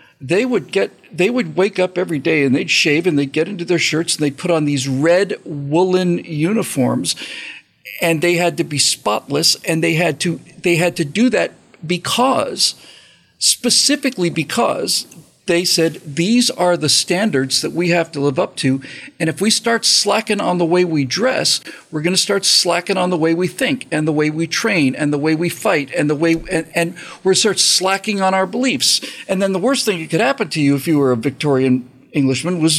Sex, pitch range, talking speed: male, 160-200 Hz, 210 wpm